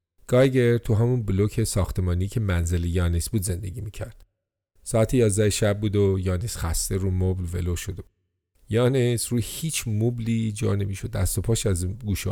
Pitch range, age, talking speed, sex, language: 90-115 Hz, 40-59, 160 wpm, male, English